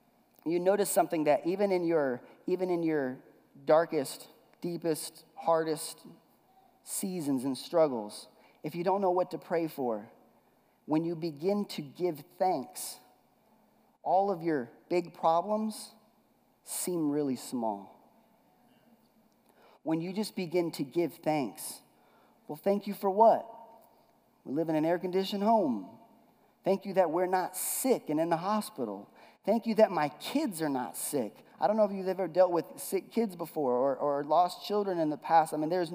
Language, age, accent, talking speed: English, 40-59, American, 160 wpm